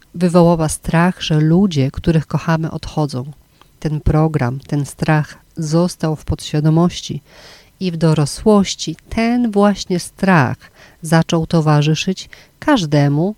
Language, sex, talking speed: Polish, female, 105 wpm